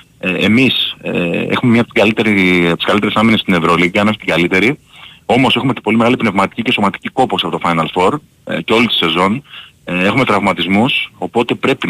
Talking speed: 200 wpm